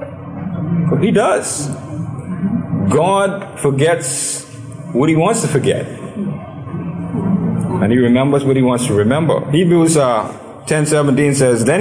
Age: 50-69